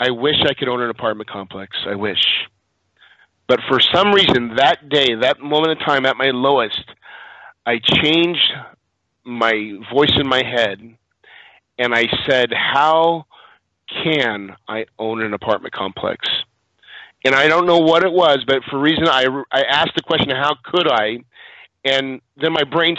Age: 30-49